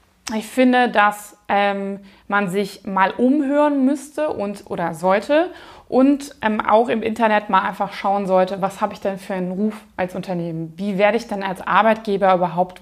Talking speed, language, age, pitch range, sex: 175 wpm, German, 20-39, 190-225 Hz, female